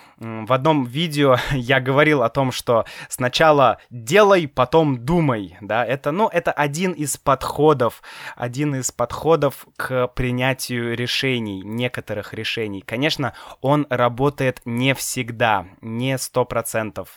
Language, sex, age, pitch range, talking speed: Russian, male, 20-39, 125-160 Hz, 120 wpm